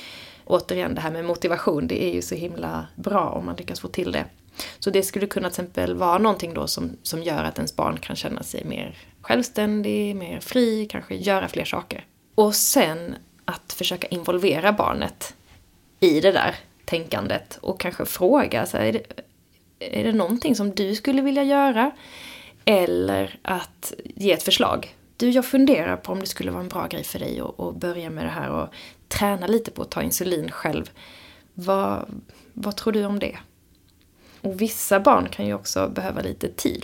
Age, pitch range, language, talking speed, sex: 20-39, 175-225 Hz, Swedish, 185 wpm, female